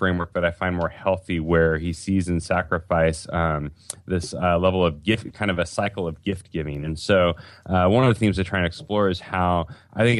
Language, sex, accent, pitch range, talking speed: English, male, American, 80-95 Hz, 230 wpm